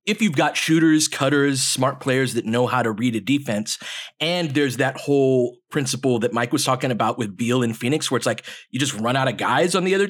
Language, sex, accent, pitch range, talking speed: English, male, American, 125-160 Hz, 240 wpm